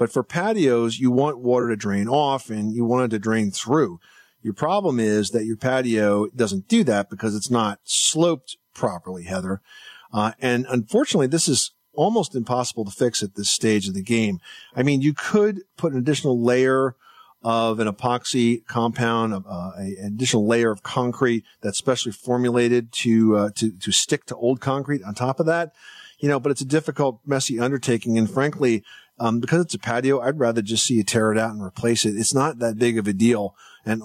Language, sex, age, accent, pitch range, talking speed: English, male, 50-69, American, 105-135 Hz, 200 wpm